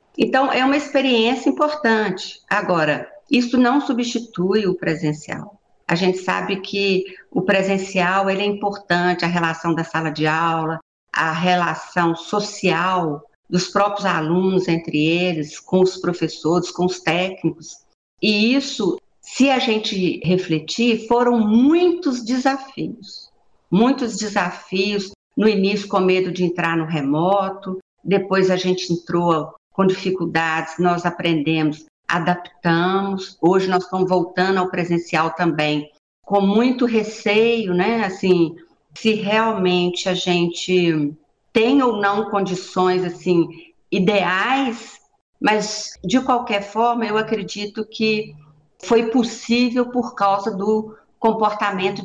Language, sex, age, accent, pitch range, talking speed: Portuguese, female, 50-69, Brazilian, 175-215 Hz, 120 wpm